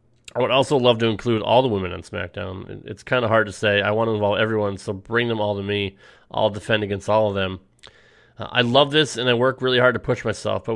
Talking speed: 260 wpm